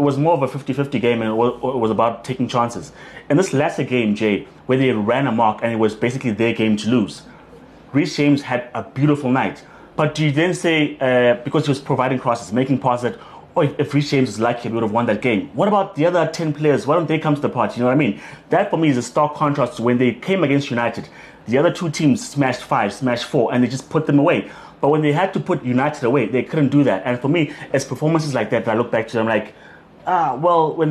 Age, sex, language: 30-49, male, English